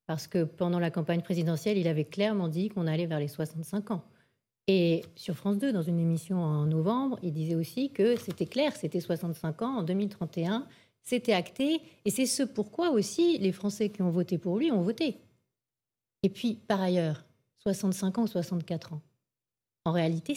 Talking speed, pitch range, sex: 185 wpm, 175-250 Hz, female